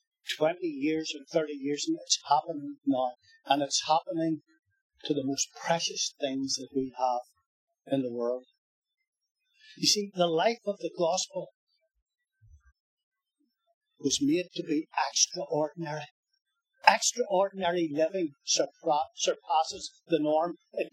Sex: male